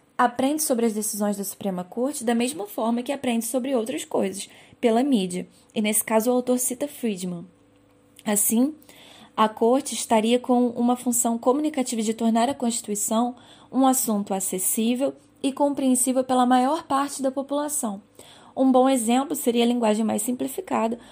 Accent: Brazilian